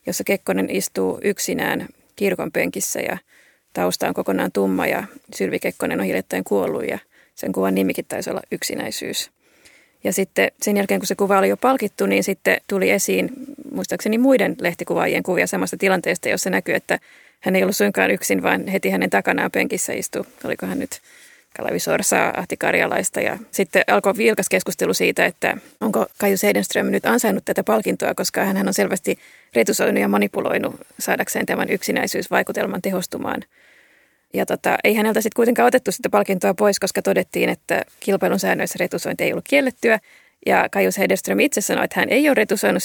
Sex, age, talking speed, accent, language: female, 30-49, 165 wpm, native, Finnish